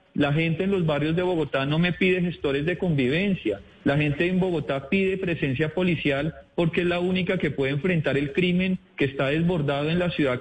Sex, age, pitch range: male, 40-59, 150-185 Hz